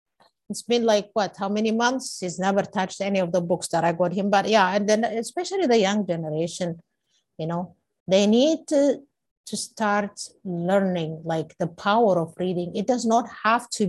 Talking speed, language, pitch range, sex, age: 190 wpm, English, 175-210 Hz, female, 50-69